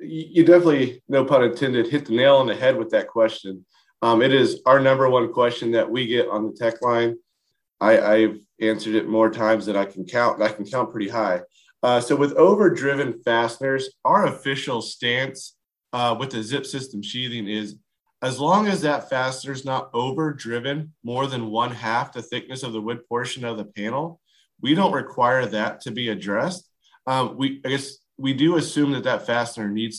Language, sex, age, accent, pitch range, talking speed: English, male, 30-49, American, 115-145 Hz, 200 wpm